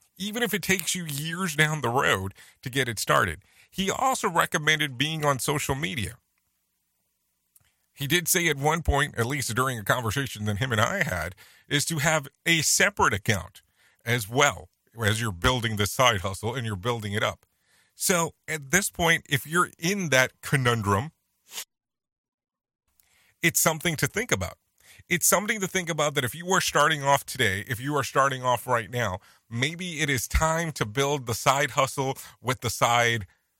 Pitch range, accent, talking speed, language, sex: 110-150 Hz, American, 180 wpm, English, male